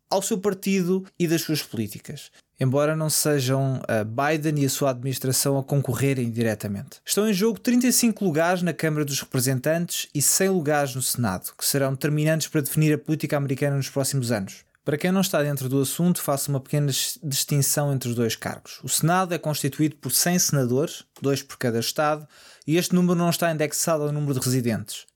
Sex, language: male, Portuguese